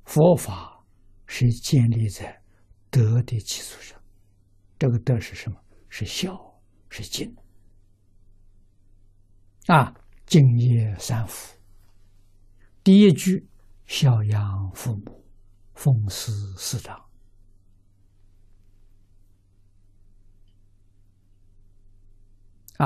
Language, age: Chinese, 60-79